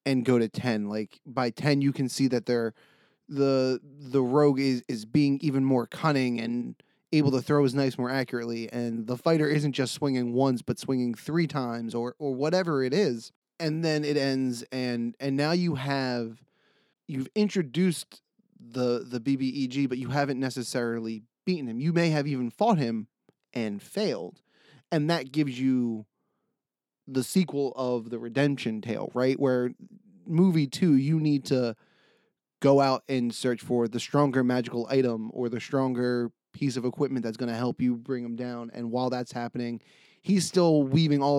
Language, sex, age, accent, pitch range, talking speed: English, male, 20-39, American, 120-145 Hz, 175 wpm